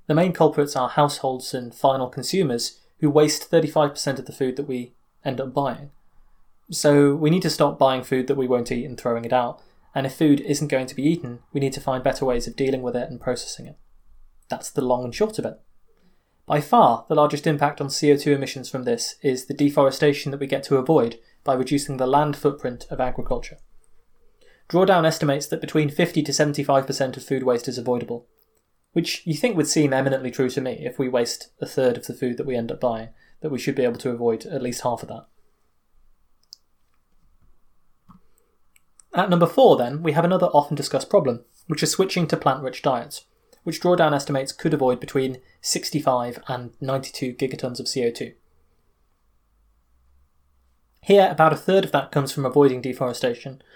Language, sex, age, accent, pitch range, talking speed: English, male, 20-39, British, 125-150 Hz, 190 wpm